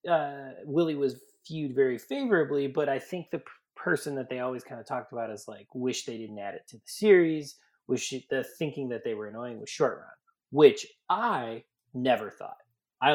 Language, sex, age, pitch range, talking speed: English, male, 20-39, 115-155 Hz, 205 wpm